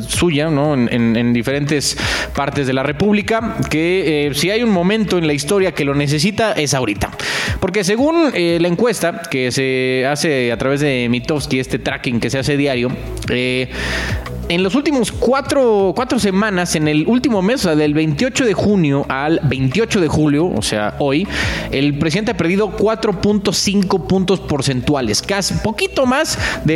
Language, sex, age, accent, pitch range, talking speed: Spanish, male, 30-49, Mexican, 130-190 Hz, 170 wpm